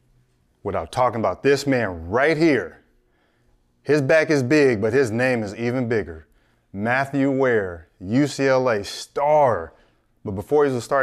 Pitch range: 115-150 Hz